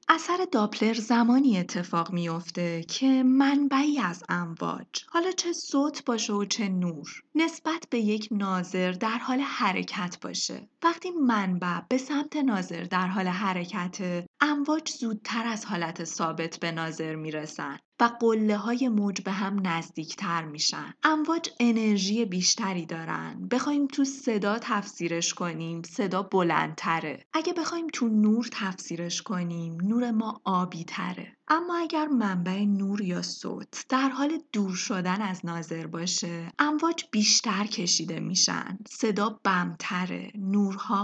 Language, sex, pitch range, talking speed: Persian, female, 180-260 Hz, 125 wpm